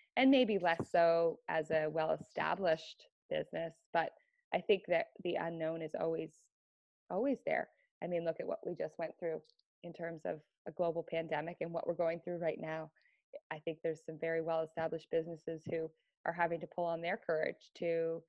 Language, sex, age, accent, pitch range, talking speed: English, female, 20-39, American, 165-230 Hz, 185 wpm